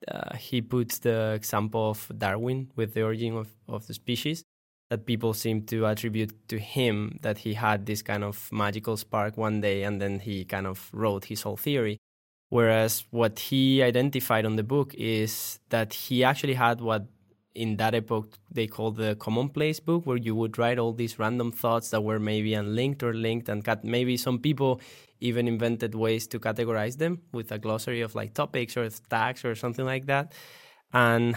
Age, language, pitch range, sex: 20-39, English, 105-120 Hz, male